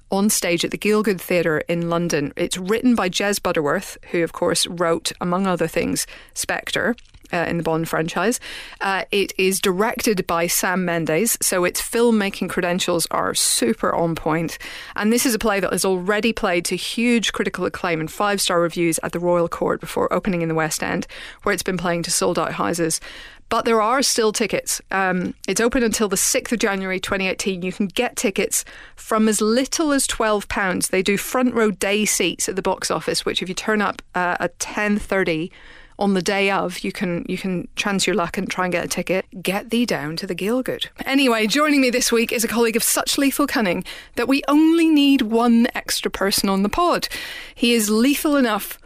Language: English